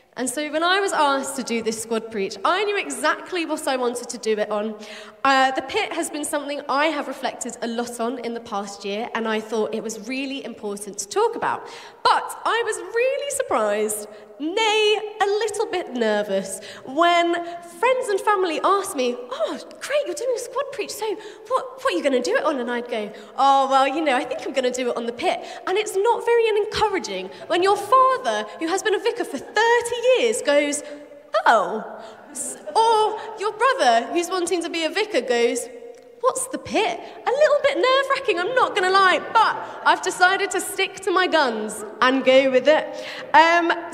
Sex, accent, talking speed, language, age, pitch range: female, British, 205 wpm, English, 20-39, 245-395 Hz